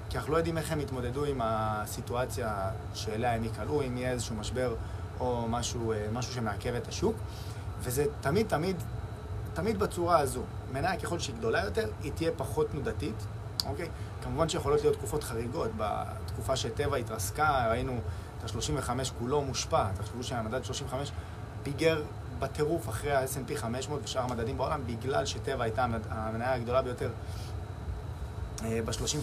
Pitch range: 105-130 Hz